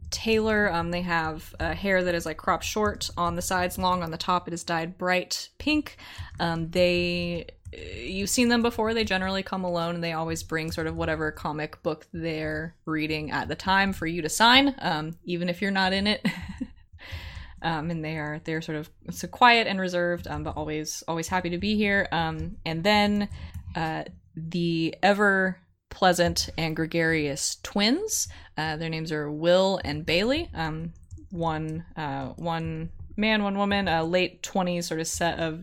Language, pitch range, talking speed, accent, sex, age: English, 155-190 Hz, 180 wpm, American, female, 20-39